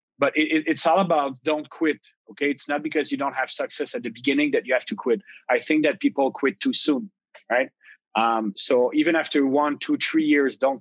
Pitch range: 130-165 Hz